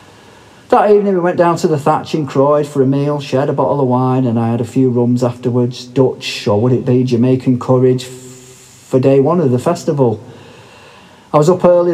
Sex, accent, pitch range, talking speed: male, British, 120-150 Hz, 210 wpm